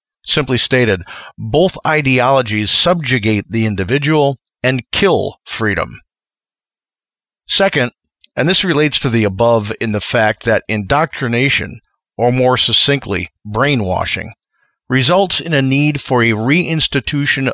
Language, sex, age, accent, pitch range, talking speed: English, male, 50-69, American, 110-150 Hz, 115 wpm